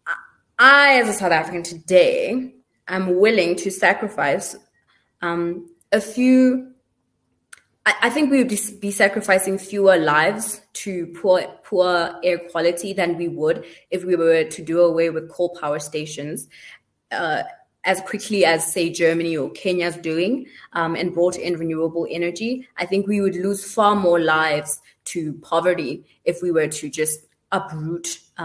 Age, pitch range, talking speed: 20-39, 155-190 Hz, 150 wpm